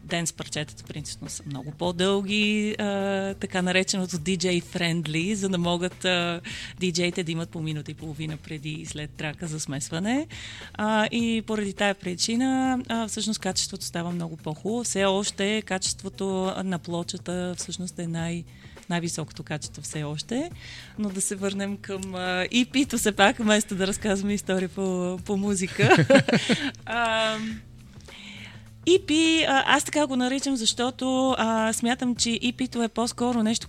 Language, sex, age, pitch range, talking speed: Bulgarian, female, 30-49, 175-220 Hz, 135 wpm